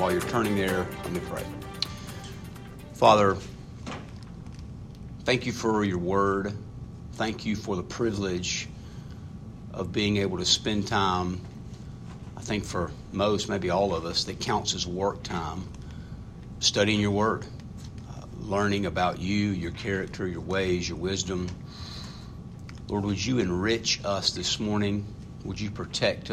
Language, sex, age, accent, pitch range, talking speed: English, male, 50-69, American, 95-110 Hz, 135 wpm